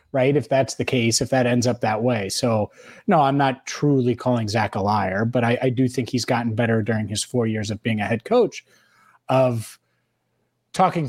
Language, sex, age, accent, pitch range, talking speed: English, male, 30-49, American, 115-135 Hz, 210 wpm